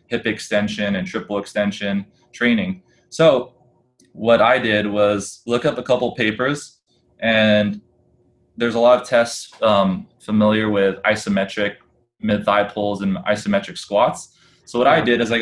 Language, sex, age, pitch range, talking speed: English, male, 20-39, 105-120 Hz, 150 wpm